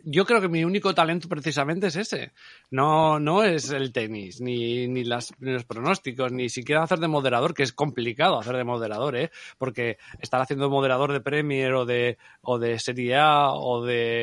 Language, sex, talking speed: Spanish, male, 195 wpm